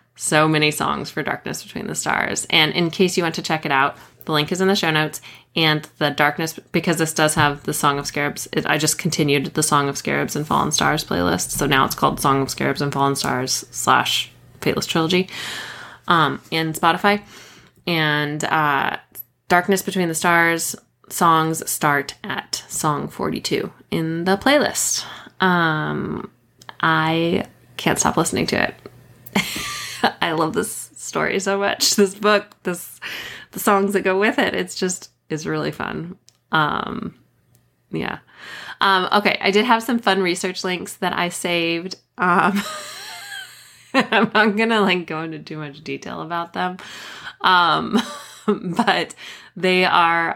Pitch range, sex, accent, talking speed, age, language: 150-190 Hz, female, American, 160 wpm, 20-39, English